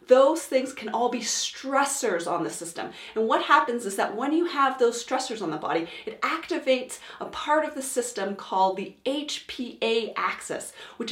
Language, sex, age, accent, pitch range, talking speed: English, female, 40-59, American, 220-270 Hz, 185 wpm